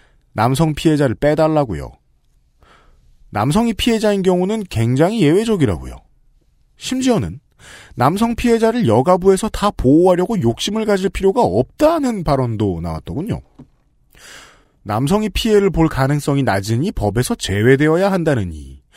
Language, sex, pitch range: Korean, male, 115-180 Hz